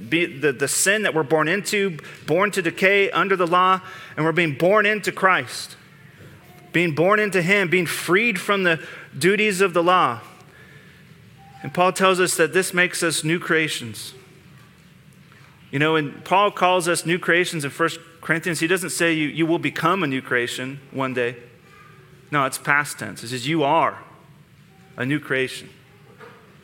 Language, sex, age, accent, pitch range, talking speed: English, male, 30-49, American, 150-185 Hz, 170 wpm